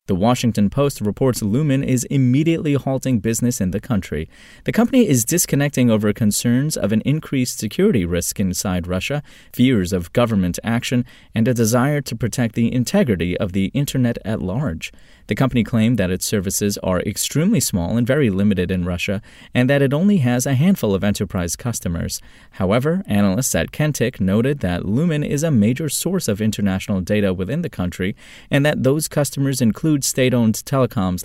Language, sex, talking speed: English, male, 170 wpm